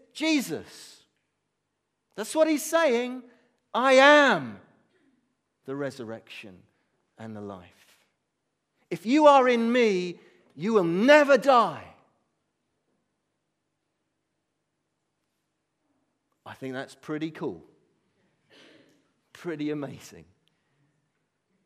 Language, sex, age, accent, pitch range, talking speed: English, male, 40-59, British, 115-175 Hz, 80 wpm